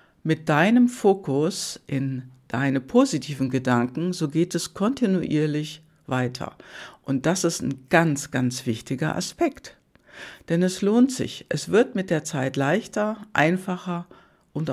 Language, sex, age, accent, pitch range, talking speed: German, female, 60-79, German, 150-195 Hz, 130 wpm